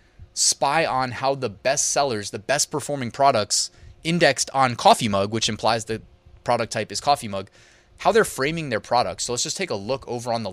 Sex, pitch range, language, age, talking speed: male, 105-130 Hz, English, 20-39, 205 wpm